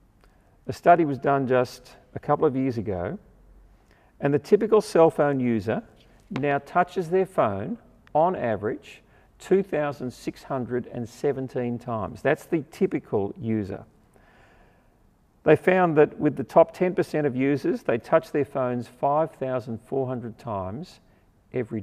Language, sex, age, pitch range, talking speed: English, male, 50-69, 120-180 Hz, 120 wpm